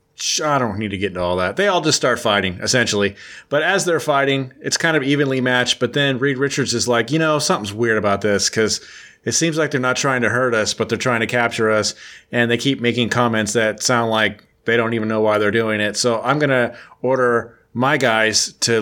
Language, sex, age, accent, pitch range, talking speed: English, male, 30-49, American, 115-140 Hz, 240 wpm